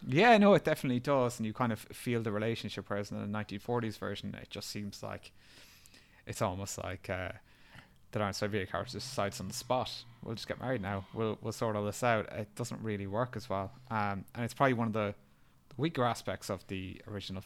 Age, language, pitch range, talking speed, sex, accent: 20-39, English, 100-120 Hz, 215 wpm, male, Irish